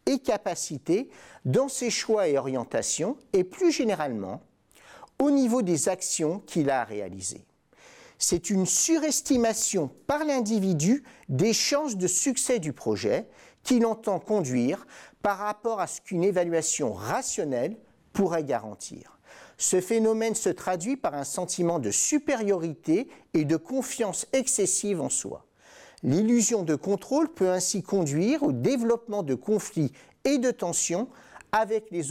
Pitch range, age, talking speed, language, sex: 170-250 Hz, 50-69, 130 wpm, French, male